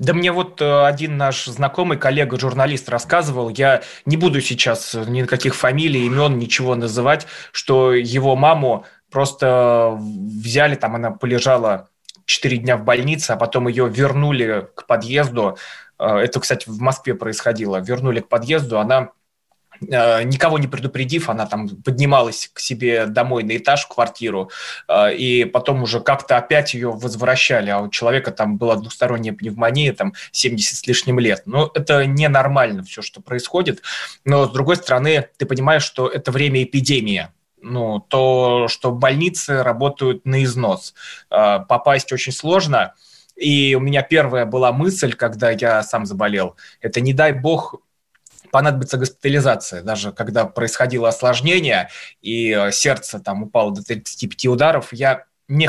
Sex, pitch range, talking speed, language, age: male, 115-140 Hz, 140 wpm, Russian, 20-39